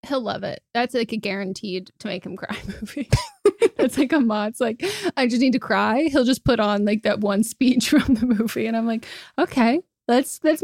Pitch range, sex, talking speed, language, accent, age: 210-250 Hz, female, 225 wpm, English, American, 20-39